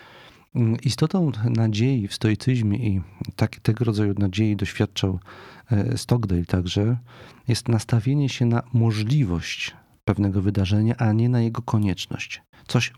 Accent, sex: native, male